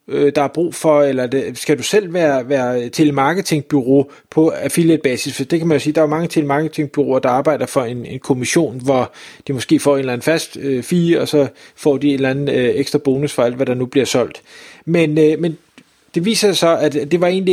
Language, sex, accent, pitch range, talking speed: Danish, male, native, 135-165 Hz, 240 wpm